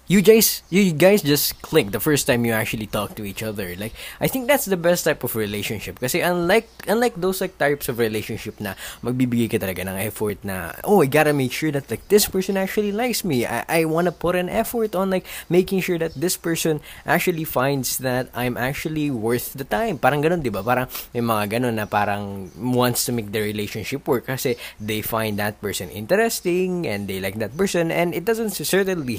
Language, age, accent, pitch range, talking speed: English, 20-39, Filipino, 105-175 Hz, 210 wpm